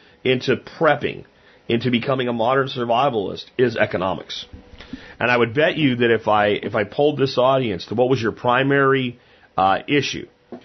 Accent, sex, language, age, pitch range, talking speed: American, male, English, 30-49, 105-135 Hz, 170 wpm